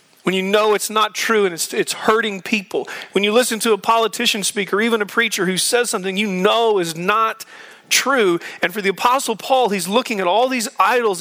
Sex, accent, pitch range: male, American, 185-240 Hz